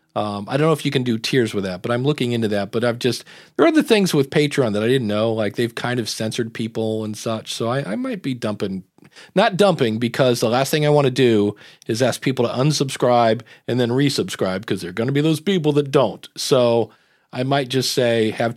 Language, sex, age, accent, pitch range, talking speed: English, male, 40-59, American, 115-150 Hz, 245 wpm